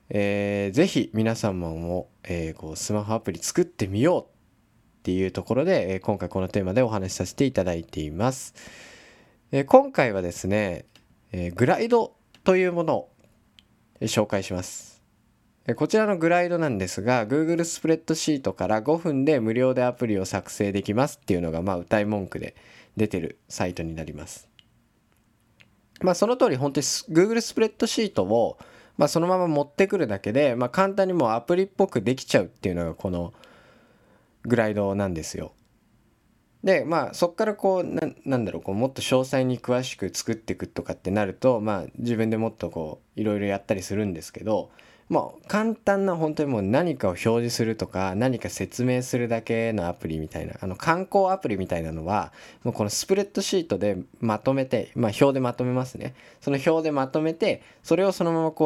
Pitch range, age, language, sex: 95-145 Hz, 20-39, Japanese, male